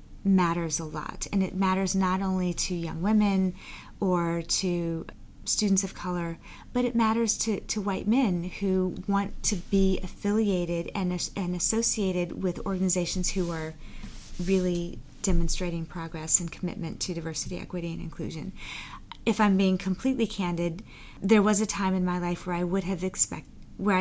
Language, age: English, 30-49